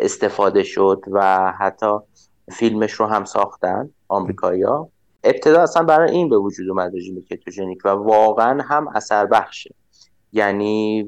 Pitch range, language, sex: 95-115 Hz, Persian, male